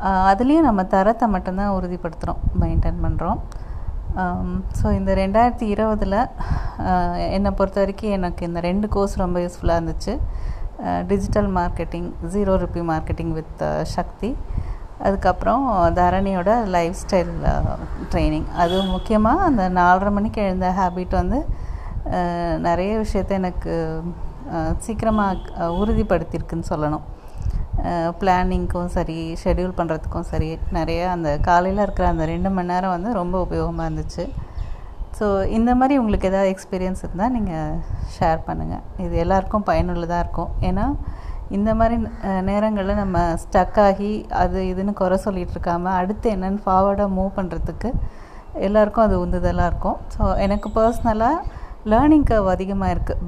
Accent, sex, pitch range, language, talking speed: native, female, 170-205 Hz, Tamil, 115 wpm